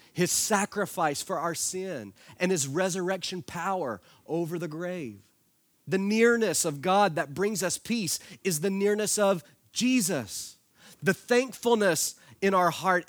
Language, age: English, 30-49